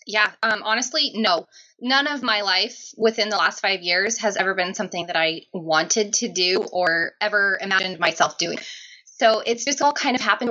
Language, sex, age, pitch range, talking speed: English, female, 20-39, 185-235 Hz, 195 wpm